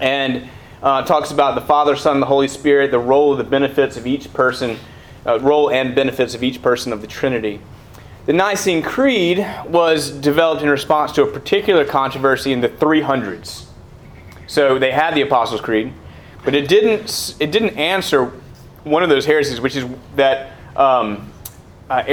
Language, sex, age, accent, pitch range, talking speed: English, male, 30-49, American, 125-150 Hz, 175 wpm